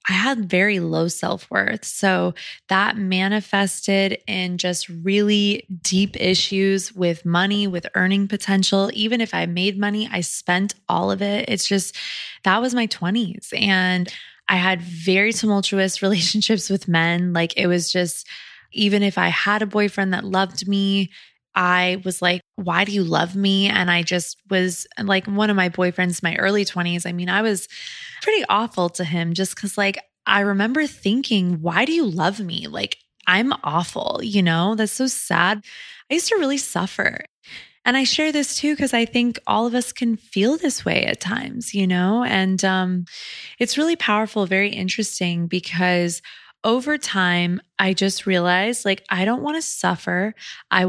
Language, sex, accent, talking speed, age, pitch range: English, female, American, 175 wpm, 20-39, 180-215 Hz